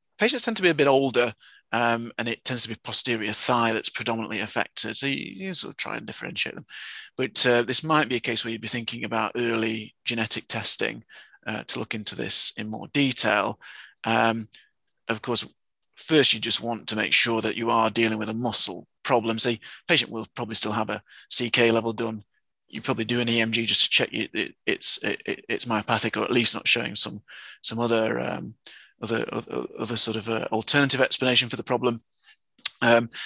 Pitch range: 110-125 Hz